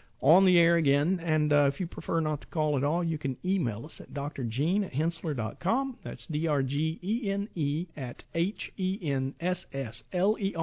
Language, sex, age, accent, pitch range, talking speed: English, male, 50-69, American, 135-165 Hz, 200 wpm